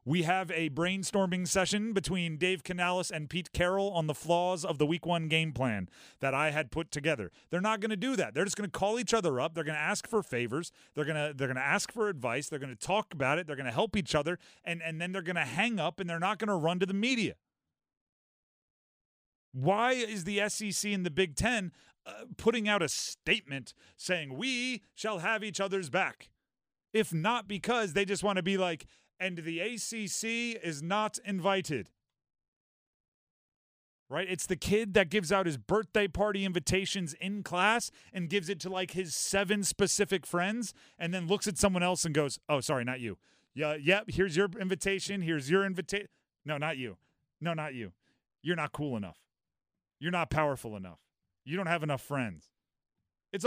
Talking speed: 200 wpm